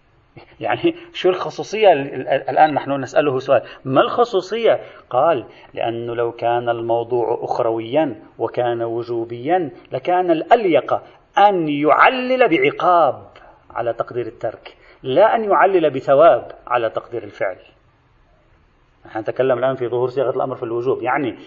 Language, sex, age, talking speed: Arabic, male, 40-59, 115 wpm